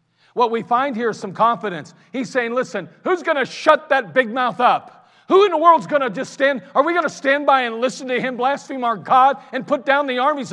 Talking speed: 250 wpm